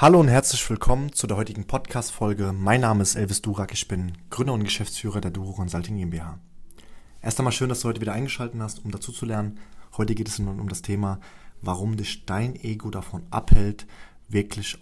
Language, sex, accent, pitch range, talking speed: German, male, German, 105-125 Hz, 190 wpm